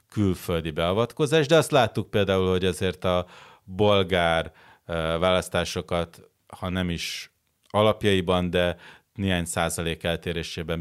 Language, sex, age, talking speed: Hungarian, male, 30-49, 105 wpm